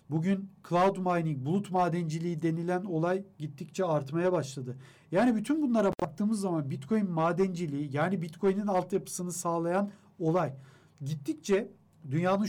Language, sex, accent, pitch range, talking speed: Turkish, male, native, 165-210 Hz, 115 wpm